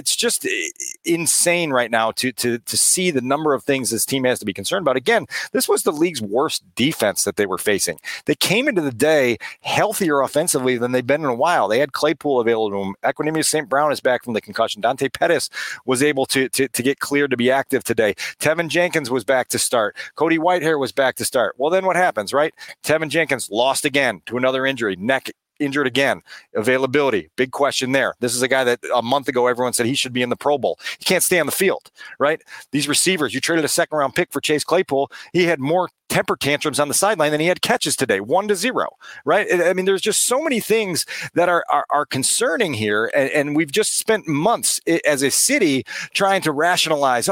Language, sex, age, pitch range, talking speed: English, male, 40-59, 130-175 Hz, 225 wpm